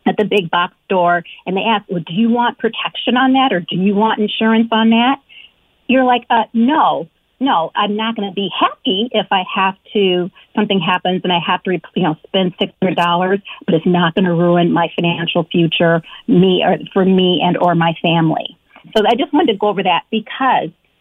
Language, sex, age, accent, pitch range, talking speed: English, female, 50-69, American, 180-225 Hz, 210 wpm